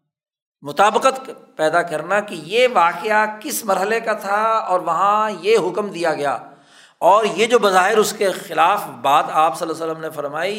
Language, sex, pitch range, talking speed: Urdu, male, 165-220 Hz, 175 wpm